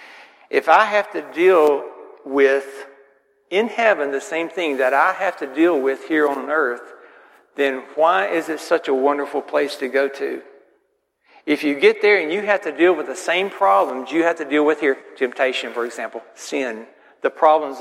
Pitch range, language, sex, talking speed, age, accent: 135-170 Hz, English, male, 190 wpm, 60-79, American